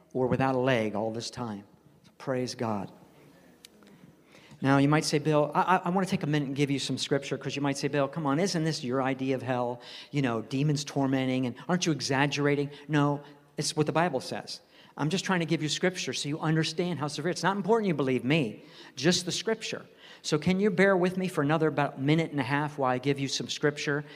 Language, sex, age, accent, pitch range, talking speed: English, male, 50-69, American, 135-160 Hz, 235 wpm